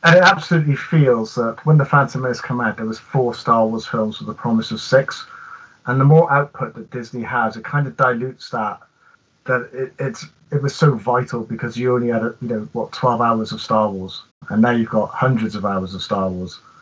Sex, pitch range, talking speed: male, 110-135 Hz, 225 wpm